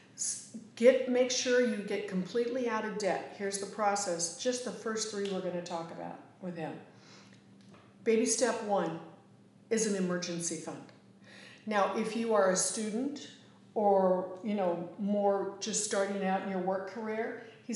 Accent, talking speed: American, 160 wpm